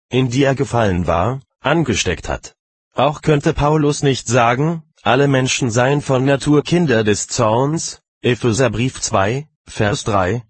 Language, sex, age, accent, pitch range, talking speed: German, male, 30-49, German, 110-140 Hz, 135 wpm